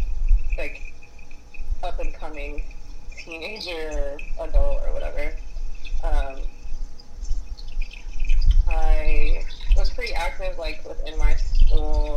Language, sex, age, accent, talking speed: English, female, 20-39, American, 85 wpm